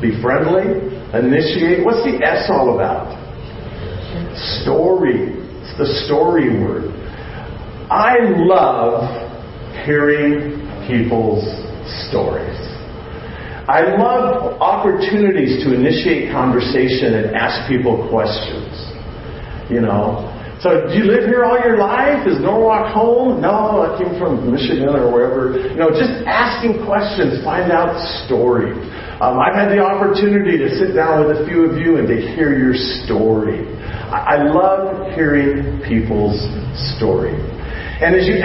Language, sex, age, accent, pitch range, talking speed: English, male, 50-69, American, 125-200 Hz, 130 wpm